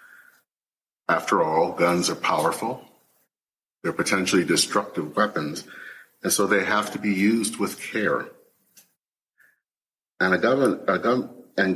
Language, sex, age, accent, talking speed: English, male, 40-59, American, 120 wpm